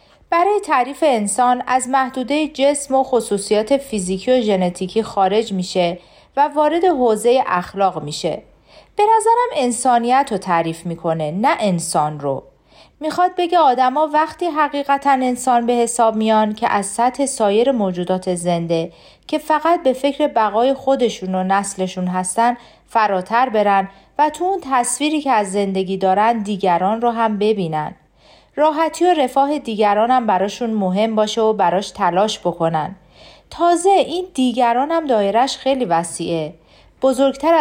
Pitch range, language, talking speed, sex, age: 190-275 Hz, Persian, 135 wpm, female, 40-59